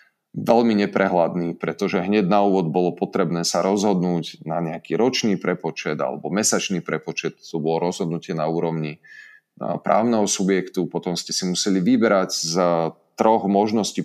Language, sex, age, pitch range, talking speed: Slovak, male, 30-49, 85-110 Hz, 135 wpm